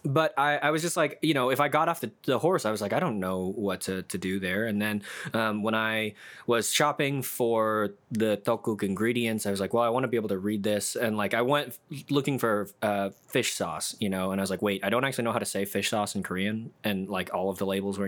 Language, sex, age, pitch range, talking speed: English, male, 20-39, 100-125 Hz, 275 wpm